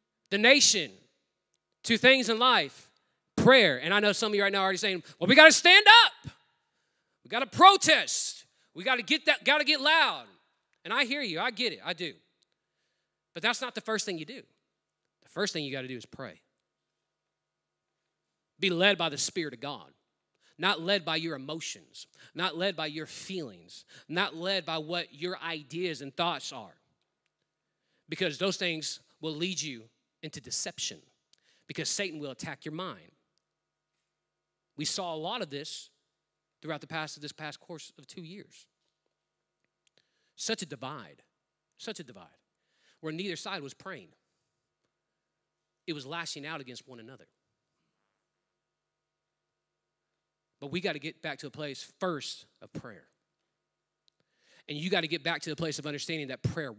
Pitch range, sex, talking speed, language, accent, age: 150-200 Hz, male, 165 wpm, English, American, 30-49